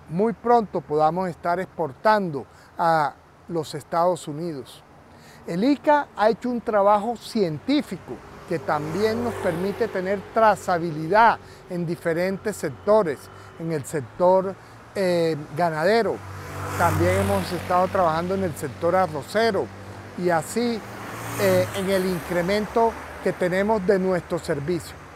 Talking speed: 115 wpm